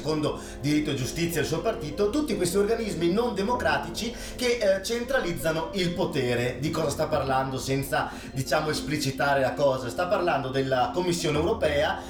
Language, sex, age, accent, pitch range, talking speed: Italian, male, 30-49, native, 130-175 Hz, 155 wpm